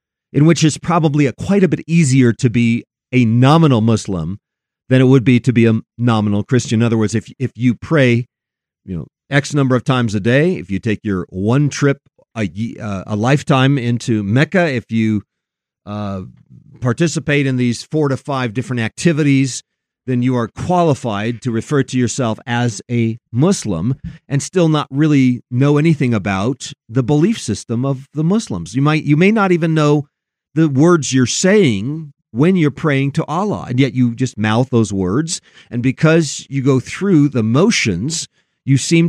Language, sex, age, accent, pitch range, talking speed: English, male, 40-59, American, 115-155 Hz, 180 wpm